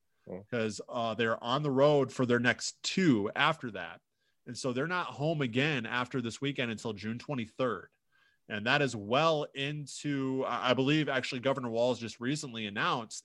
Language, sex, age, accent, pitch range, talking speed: English, male, 20-39, American, 110-135 Hz, 165 wpm